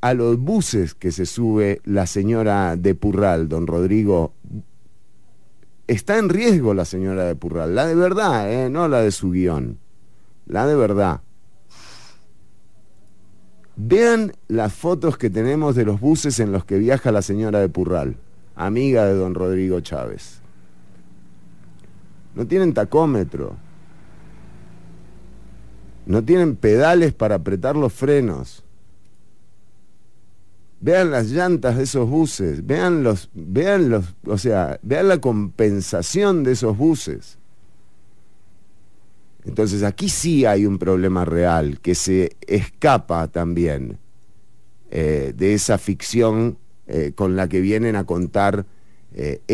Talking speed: 125 wpm